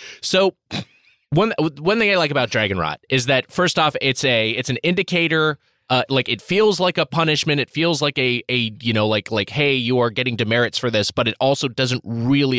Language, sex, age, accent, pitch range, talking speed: English, male, 20-39, American, 105-135 Hz, 220 wpm